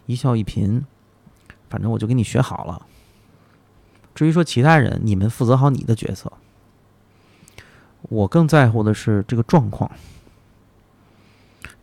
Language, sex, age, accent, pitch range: Chinese, male, 30-49, native, 105-130 Hz